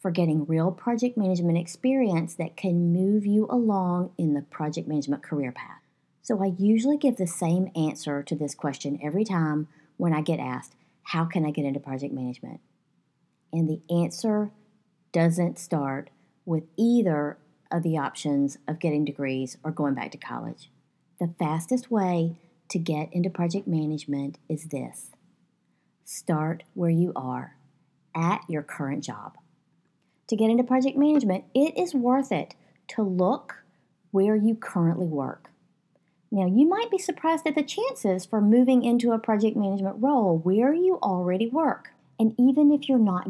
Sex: female